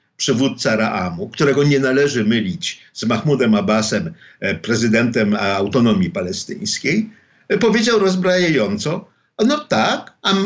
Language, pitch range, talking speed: Polish, 125-195 Hz, 100 wpm